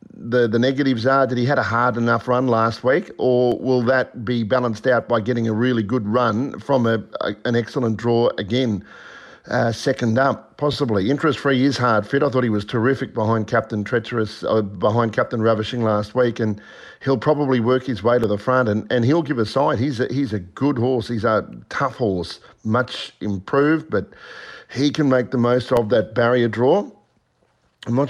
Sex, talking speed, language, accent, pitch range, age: male, 200 wpm, English, Australian, 115-130 Hz, 50-69